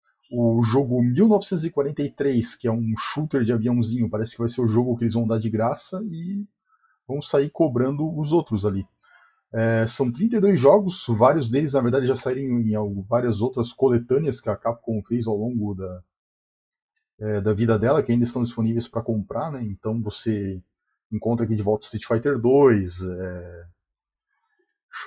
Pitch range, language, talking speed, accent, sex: 105-135 Hz, Portuguese, 170 wpm, Brazilian, male